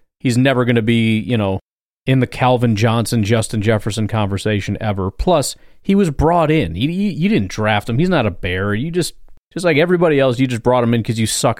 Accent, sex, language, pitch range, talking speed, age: American, male, English, 105-135 Hz, 215 wpm, 30-49